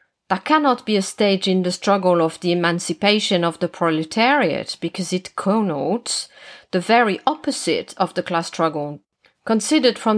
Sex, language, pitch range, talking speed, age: female, English, 175-225 Hz, 155 wpm, 40-59